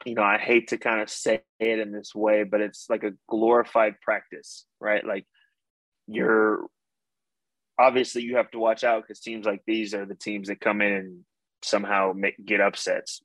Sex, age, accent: male, 20-39, American